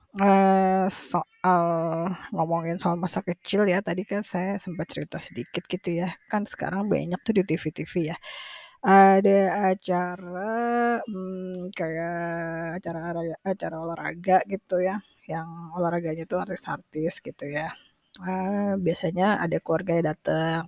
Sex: female